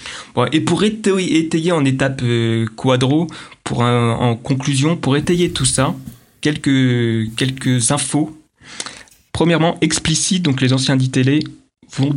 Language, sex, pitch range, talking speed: French, male, 120-145 Hz, 135 wpm